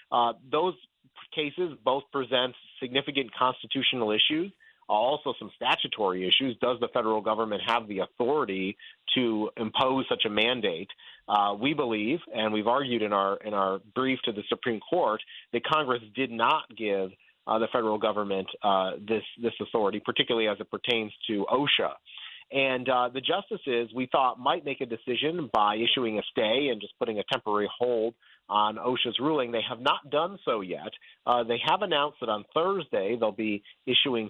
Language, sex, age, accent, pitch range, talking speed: English, male, 30-49, American, 115-140 Hz, 170 wpm